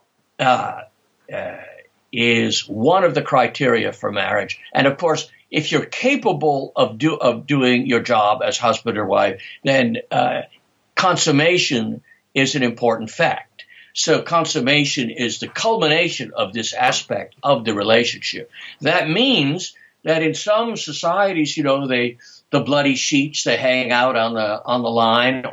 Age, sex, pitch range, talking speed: 60-79, male, 130-170 Hz, 150 wpm